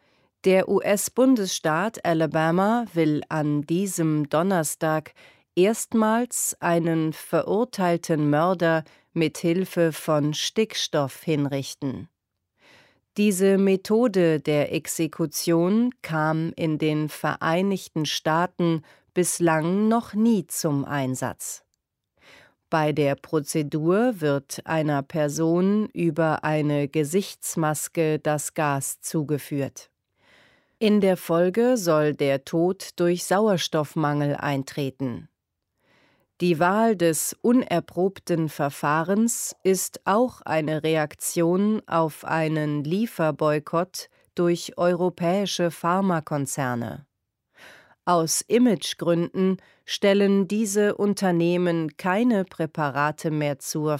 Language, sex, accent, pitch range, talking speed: English, female, German, 150-190 Hz, 85 wpm